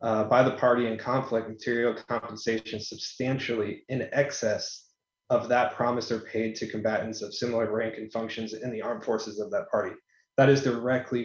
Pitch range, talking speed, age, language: 110-125 Hz, 175 wpm, 20-39, English